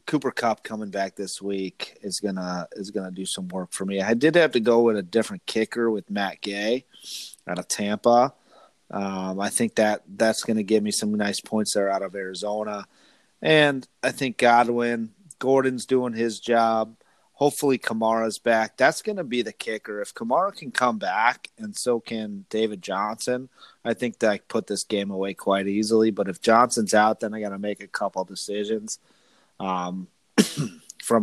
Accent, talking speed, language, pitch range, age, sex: American, 180 wpm, English, 100-120 Hz, 30-49, male